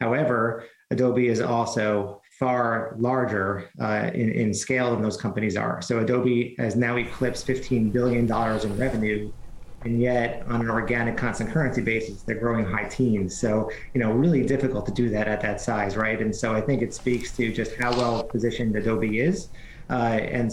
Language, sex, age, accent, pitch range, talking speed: English, male, 30-49, American, 110-120 Hz, 180 wpm